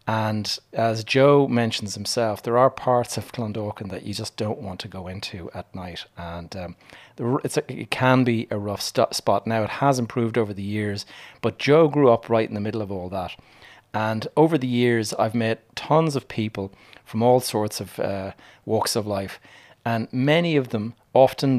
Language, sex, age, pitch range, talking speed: English, male, 30-49, 105-120 Hz, 195 wpm